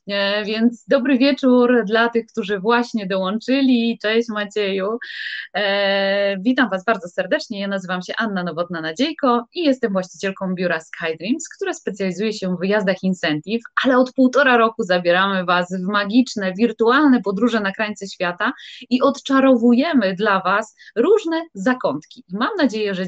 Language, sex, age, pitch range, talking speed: Polish, female, 20-39, 190-250 Hz, 145 wpm